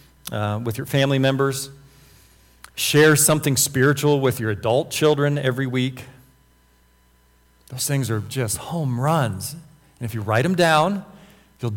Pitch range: 110-145 Hz